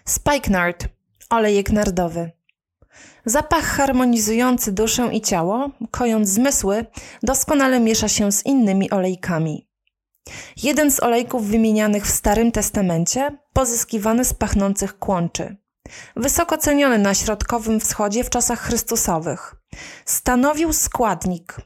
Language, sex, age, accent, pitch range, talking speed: Polish, female, 20-39, native, 200-255 Hz, 105 wpm